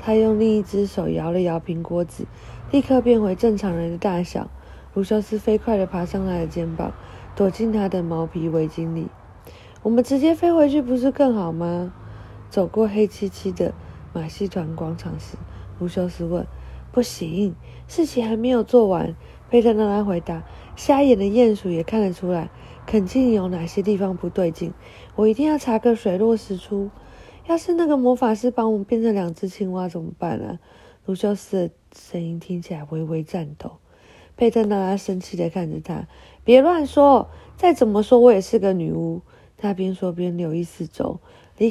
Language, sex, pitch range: Chinese, female, 170-230 Hz